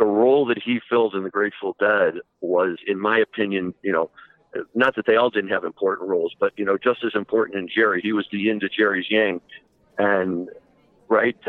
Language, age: English, 60-79